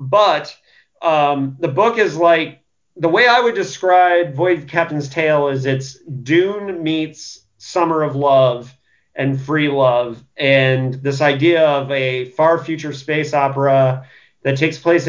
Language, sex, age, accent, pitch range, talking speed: English, male, 30-49, American, 135-160 Hz, 145 wpm